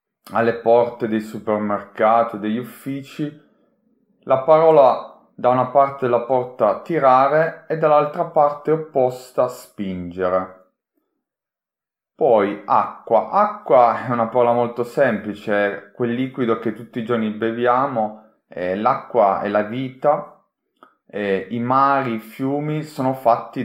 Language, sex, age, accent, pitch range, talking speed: Italian, male, 30-49, native, 110-140 Hz, 115 wpm